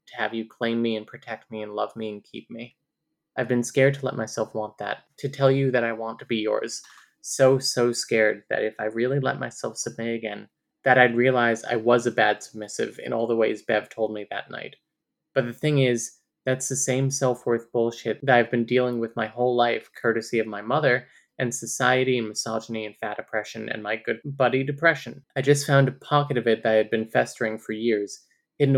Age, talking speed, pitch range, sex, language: 20-39, 220 wpm, 110-130 Hz, male, English